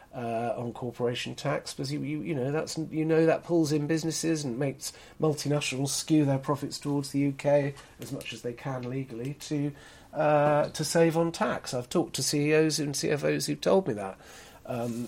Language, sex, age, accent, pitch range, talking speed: English, male, 40-59, British, 125-160 Hz, 190 wpm